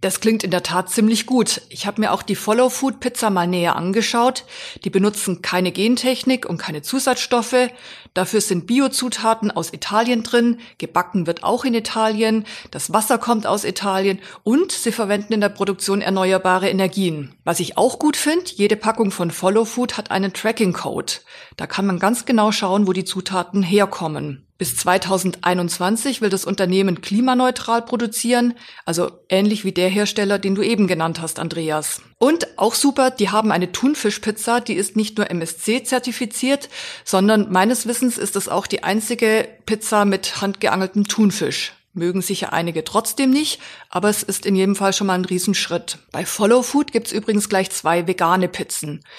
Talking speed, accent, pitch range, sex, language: 165 wpm, German, 185-235 Hz, female, German